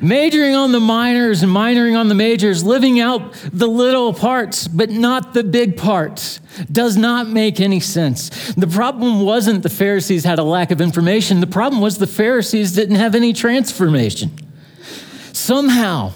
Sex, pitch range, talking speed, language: male, 160-230 Hz, 165 wpm, English